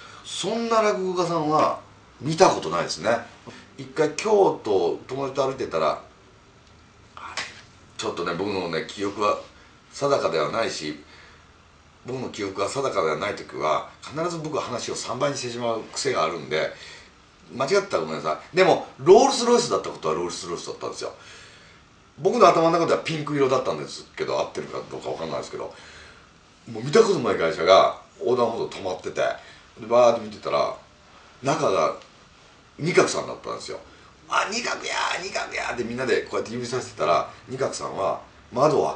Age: 40-59